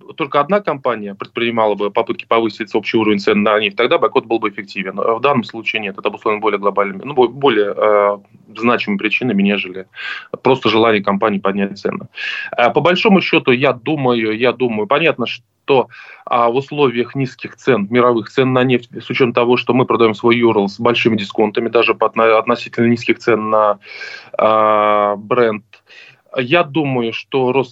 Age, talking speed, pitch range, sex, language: 20-39, 170 wpm, 110-125 Hz, male, Russian